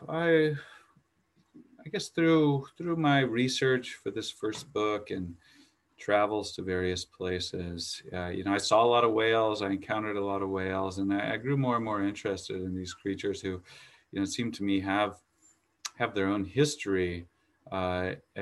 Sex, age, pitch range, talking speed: male, 30-49, 95-125 Hz, 175 wpm